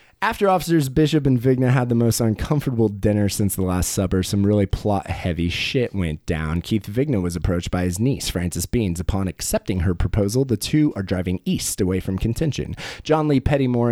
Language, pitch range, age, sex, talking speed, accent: English, 95-120 Hz, 20-39, male, 190 wpm, American